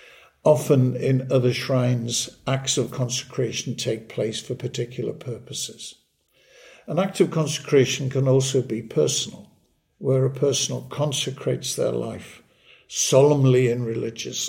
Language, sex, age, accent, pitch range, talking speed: English, male, 60-79, British, 120-140 Hz, 120 wpm